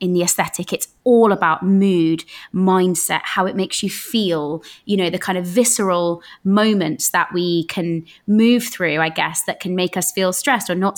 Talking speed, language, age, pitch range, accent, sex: 190 wpm, English, 20-39, 175-220 Hz, British, female